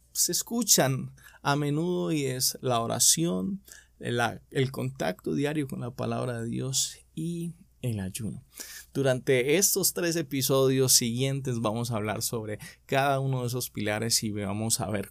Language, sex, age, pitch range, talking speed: Spanish, male, 20-39, 115-155 Hz, 150 wpm